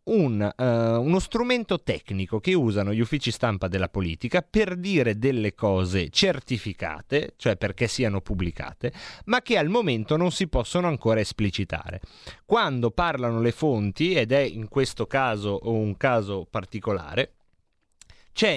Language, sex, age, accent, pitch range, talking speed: Italian, male, 30-49, native, 115-175 Hz, 135 wpm